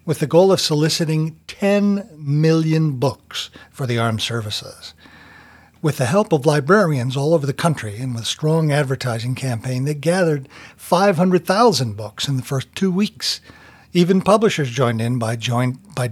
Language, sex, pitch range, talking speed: English, male, 120-160 Hz, 155 wpm